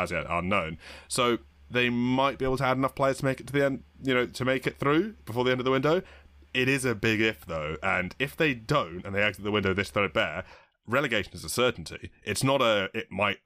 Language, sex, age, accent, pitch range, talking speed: English, male, 30-49, British, 95-125 Hz, 245 wpm